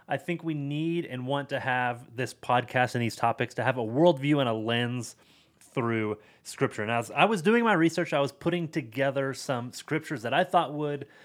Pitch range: 115-150 Hz